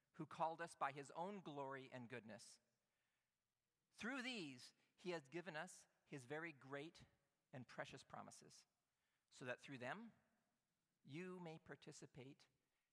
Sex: male